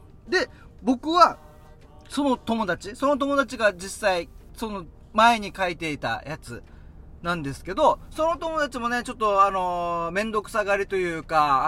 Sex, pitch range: male, 160-270 Hz